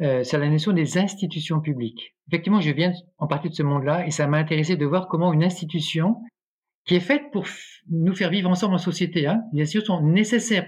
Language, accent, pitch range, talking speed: French, French, 145-185 Hz, 220 wpm